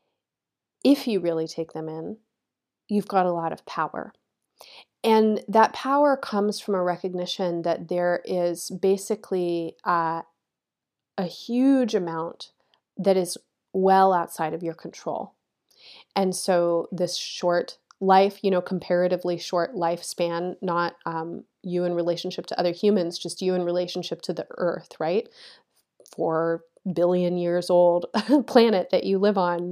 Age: 30-49